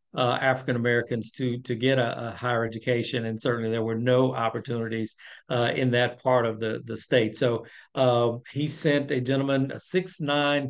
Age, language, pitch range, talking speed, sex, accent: 50-69, English, 120-130 Hz, 185 wpm, male, American